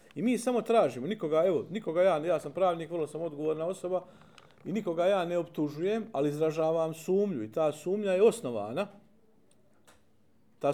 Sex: male